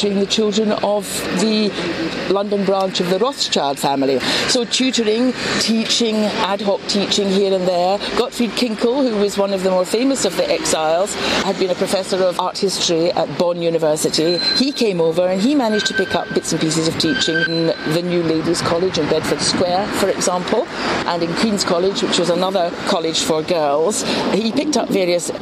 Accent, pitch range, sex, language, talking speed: British, 160-220 Hz, female, English, 185 wpm